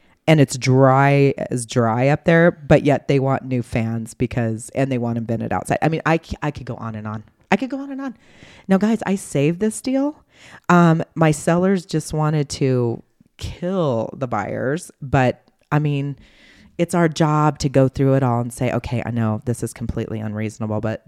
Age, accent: 30-49, American